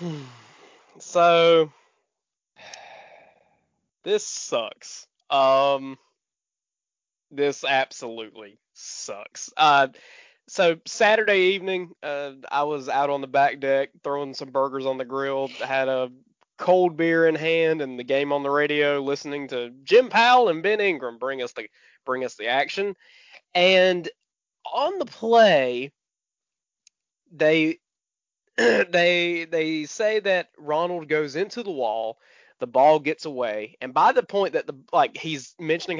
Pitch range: 140-180 Hz